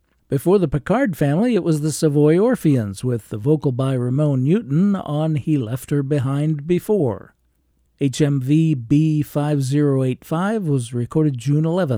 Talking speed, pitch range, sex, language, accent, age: 150 wpm, 130-165 Hz, male, English, American, 50-69